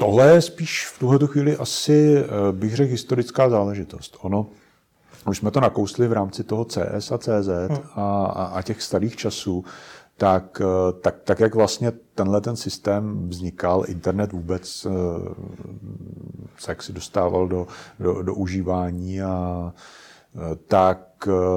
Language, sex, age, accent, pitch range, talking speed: Czech, male, 40-59, native, 90-110 Hz, 135 wpm